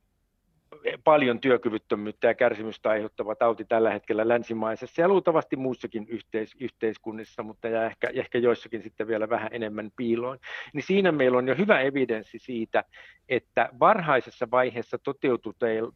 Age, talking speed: 50-69, 130 wpm